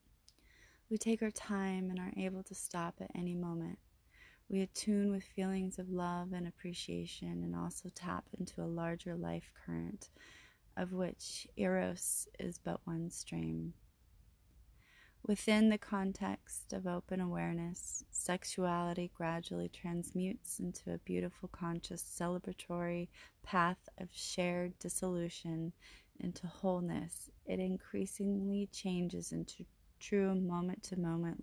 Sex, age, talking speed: female, 30-49, 115 wpm